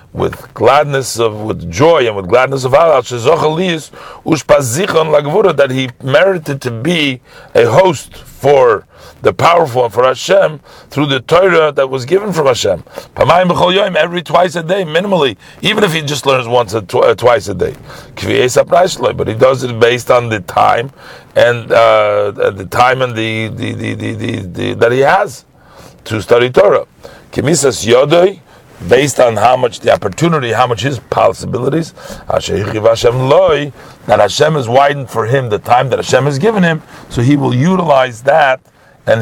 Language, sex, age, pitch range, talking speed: English, male, 50-69, 120-155 Hz, 155 wpm